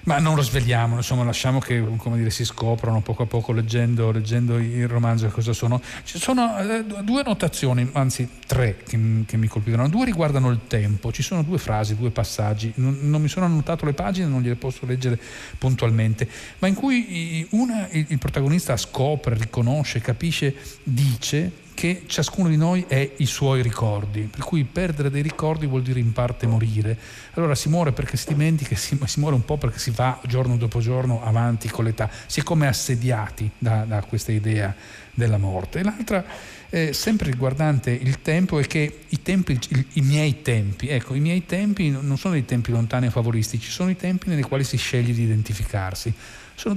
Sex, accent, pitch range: male, native, 115-155 Hz